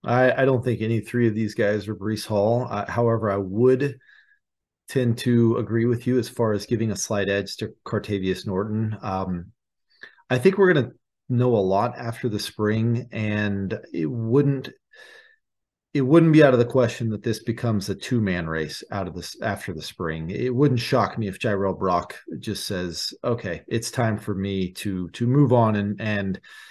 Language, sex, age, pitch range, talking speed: English, male, 40-59, 100-125 Hz, 195 wpm